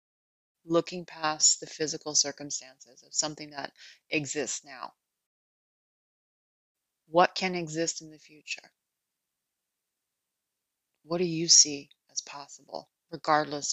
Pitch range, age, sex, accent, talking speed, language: 150-170 Hz, 30-49, female, American, 100 wpm, English